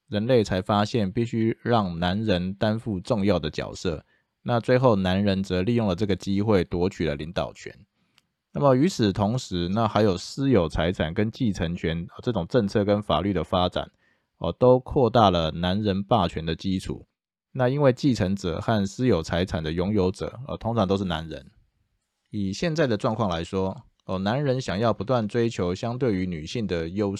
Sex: male